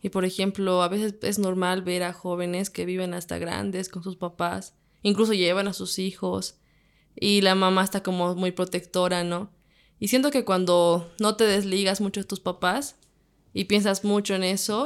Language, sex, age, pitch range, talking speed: Spanish, female, 20-39, 175-200 Hz, 185 wpm